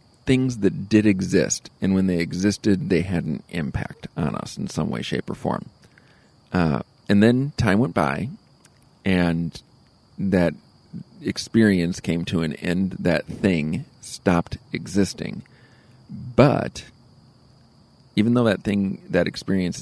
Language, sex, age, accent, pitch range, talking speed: English, male, 40-59, American, 85-110 Hz, 135 wpm